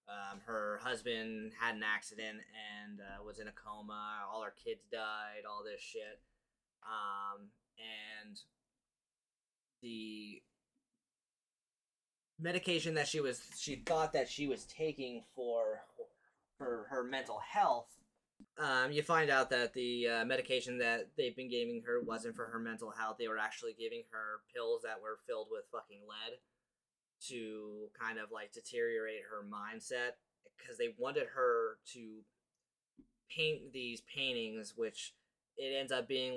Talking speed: 145 wpm